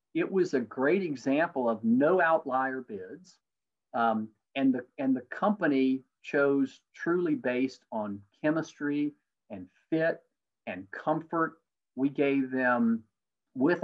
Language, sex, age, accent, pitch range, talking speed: English, male, 50-69, American, 120-155 Hz, 120 wpm